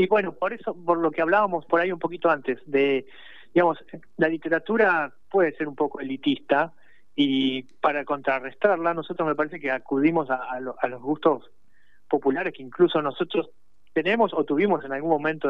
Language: Spanish